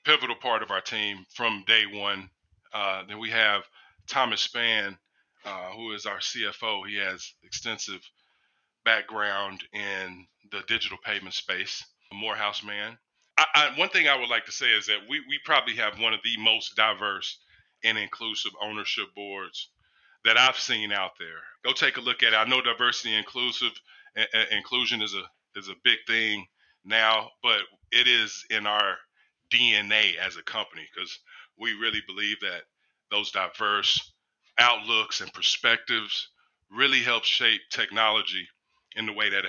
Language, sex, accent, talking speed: English, male, American, 165 wpm